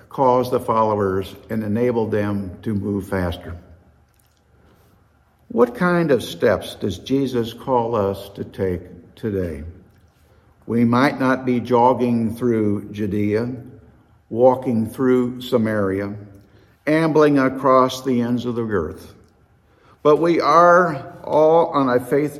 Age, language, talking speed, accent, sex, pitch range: 60-79, English, 120 wpm, American, male, 105-145 Hz